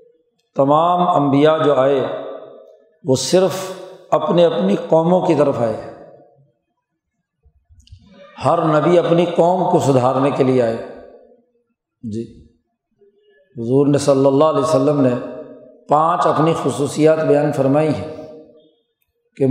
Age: 50-69